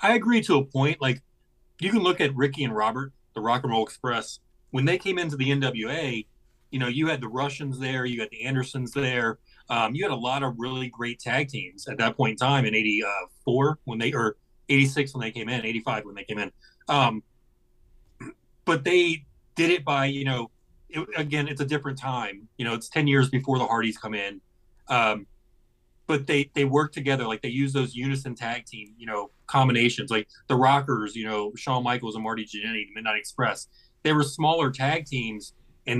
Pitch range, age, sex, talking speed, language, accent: 115-140 Hz, 30-49, male, 205 wpm, English, American